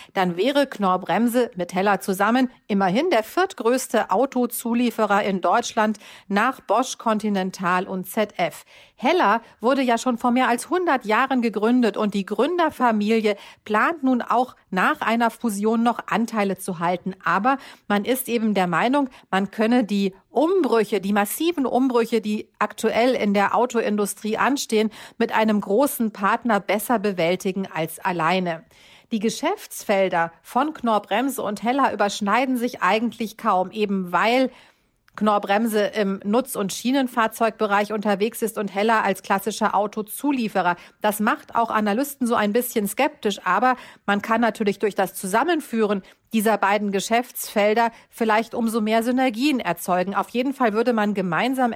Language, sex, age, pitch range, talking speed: German, female, 40-59, 200-245 Hz, 140 wpm